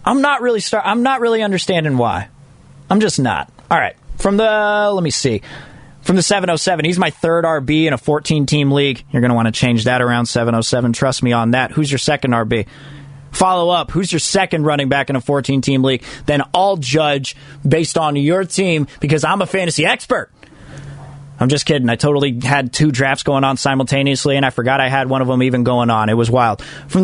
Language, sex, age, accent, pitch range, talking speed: English, male, 20-39, American, 130-165 Hz, 215 wpm